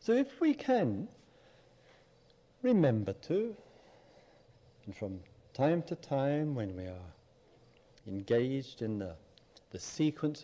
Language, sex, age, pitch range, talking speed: English, male, 50-69, 105-155 Hz, 110 wpm